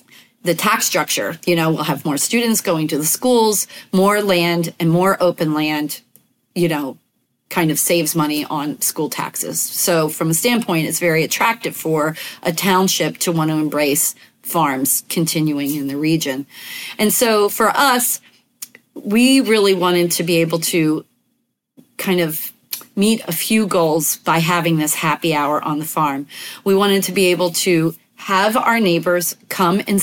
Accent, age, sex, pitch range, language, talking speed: American, 30-49, female, 160-195 Hz, English, 165 wpm